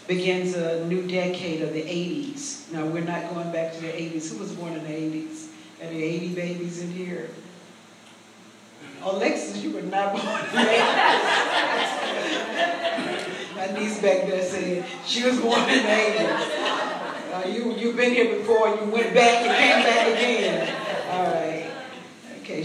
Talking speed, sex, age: 165 wpm, female, 40-59